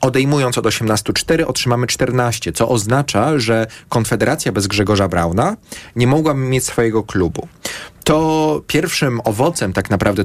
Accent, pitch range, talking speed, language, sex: native, 105-140 Hz, 130 wpm, Polish, male